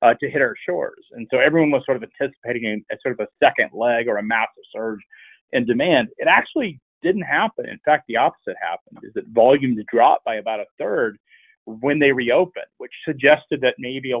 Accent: American